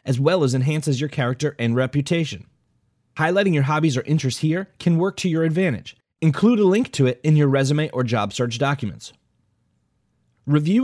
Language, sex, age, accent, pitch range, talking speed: English, male, 30-49, American, 120-170 Hz, 175 wpm